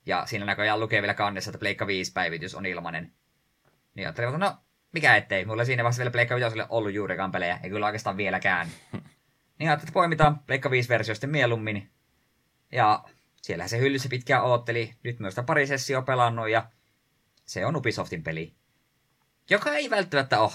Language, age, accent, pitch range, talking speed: Finnish, 20-39, native, 95-130 Hz, 175 wpm